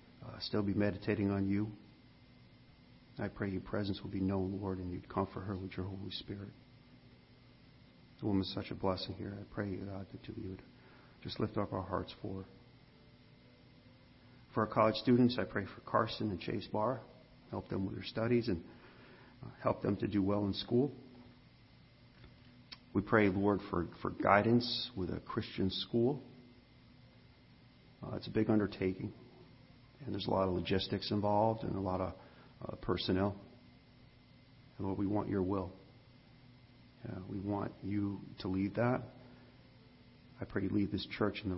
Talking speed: 165 wpm